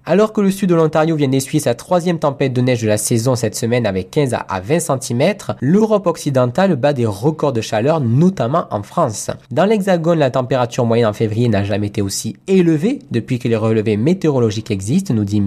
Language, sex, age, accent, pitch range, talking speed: French, male, 20-39, French, 115-170 Hz, 205 wpm